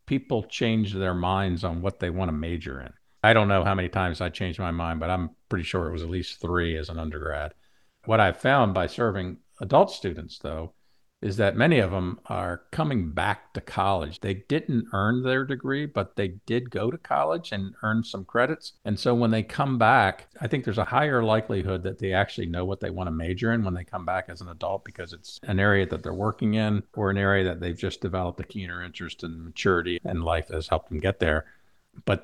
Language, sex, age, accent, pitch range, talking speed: English, male, 50-69, American, 90-105 Hz, 230 wpm